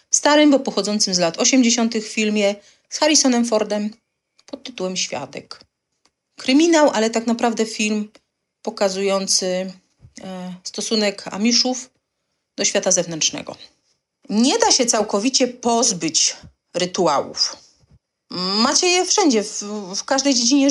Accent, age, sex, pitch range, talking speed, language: native, 30-49, female, 195-270 Hz, 110 wpm, Polish